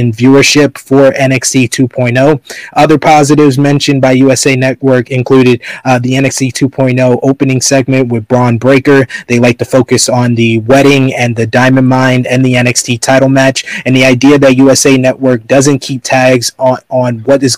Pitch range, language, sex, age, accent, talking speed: 125-135 Hz, English, male, 20-39, American, 165 wpm